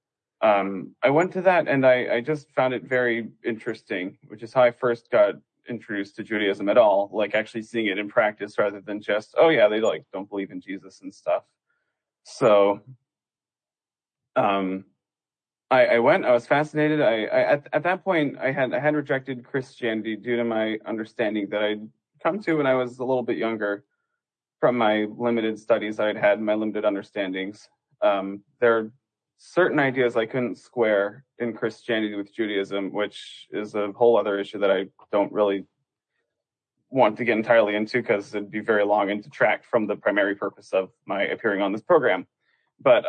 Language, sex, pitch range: English, male, 105-125 Hz